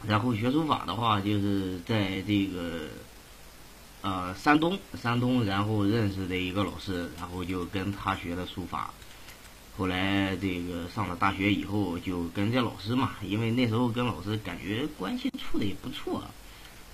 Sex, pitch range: male, 90-110 Hz